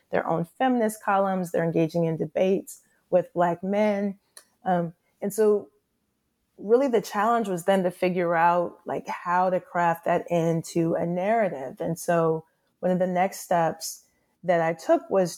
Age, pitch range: 30-49, 170-200 Hz